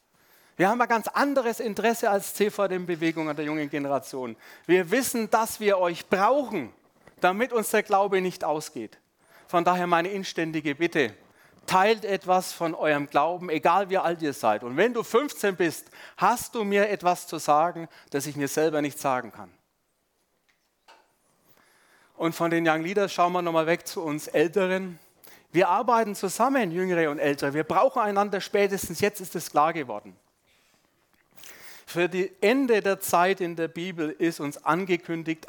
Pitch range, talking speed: 150-200 Hz, 160 wpm